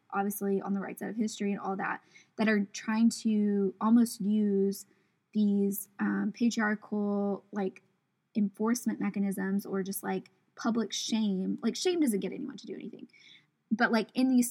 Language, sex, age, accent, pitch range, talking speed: English, female, 10-29, American, 200-230 Hz, 160 wpm